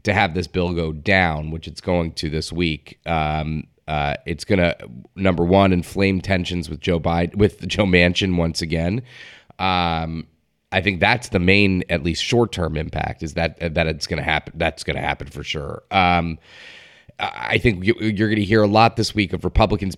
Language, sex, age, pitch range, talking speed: English, male, 30-49, 80-100 Hz, 200 wpm